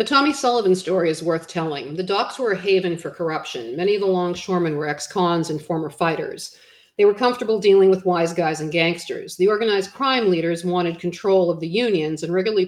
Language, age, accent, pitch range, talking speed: English, 50-69, American, 170-200 Hz, 205 wpm